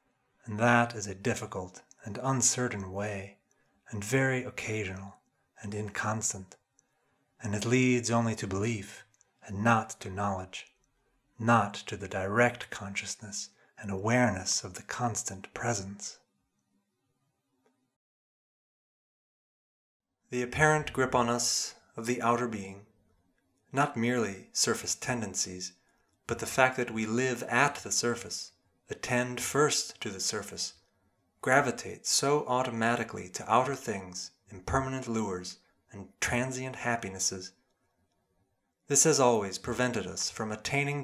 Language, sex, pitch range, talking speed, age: English, male, 100-125 Hz, 115 wpm, 40-59